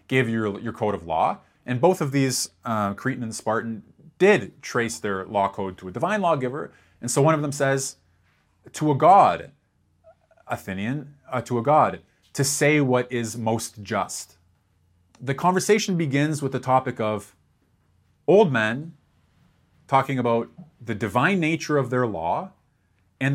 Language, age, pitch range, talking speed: English, 30-49, 105-140 Hz, 155 wpm